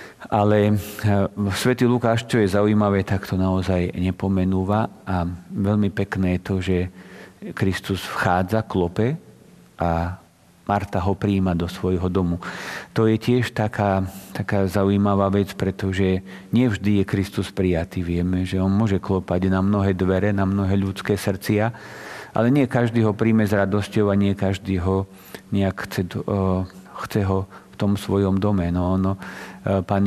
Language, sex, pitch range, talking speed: Slovak, male, 95-105 Hz, 145 wpm